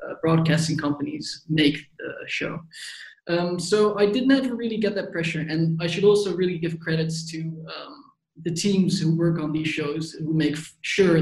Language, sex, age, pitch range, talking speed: English, male, 20-39, 160-190 Hz, 180 wpm